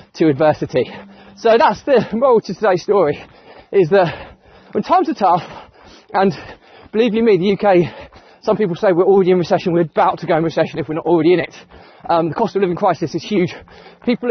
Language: English